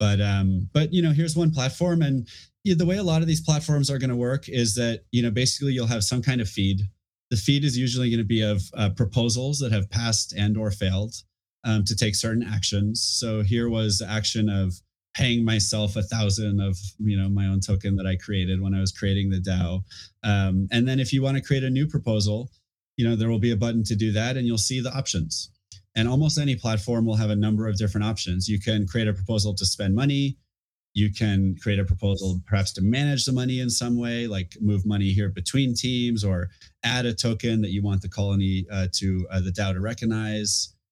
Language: English